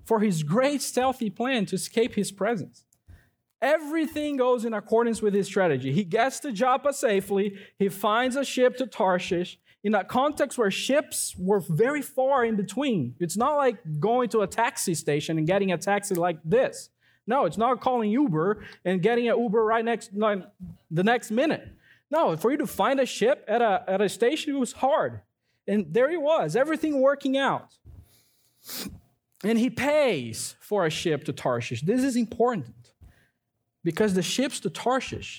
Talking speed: 175 wpm